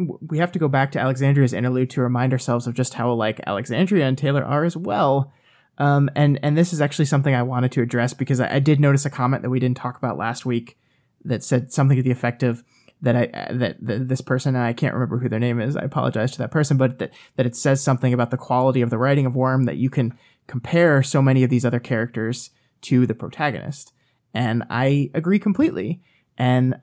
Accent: American